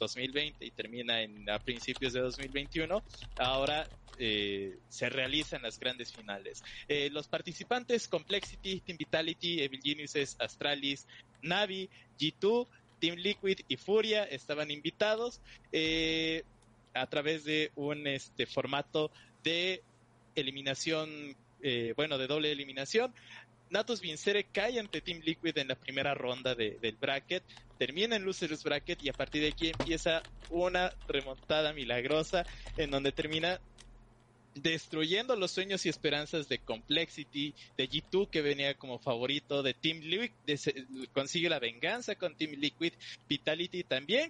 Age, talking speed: 20-39, 135 wpm